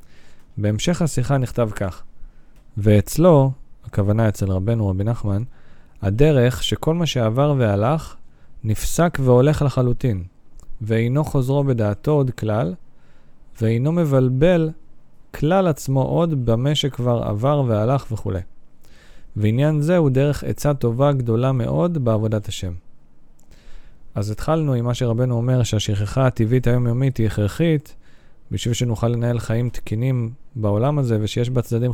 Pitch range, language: 110-145 Hz, Hebrew